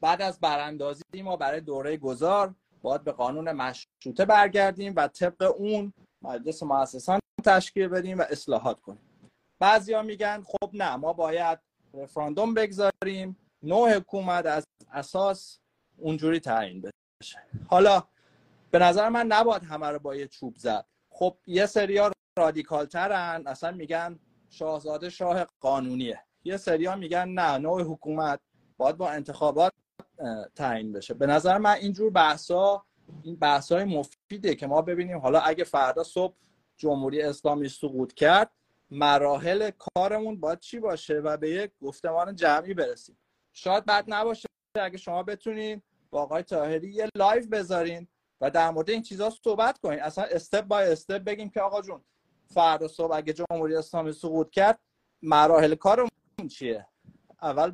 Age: 30-49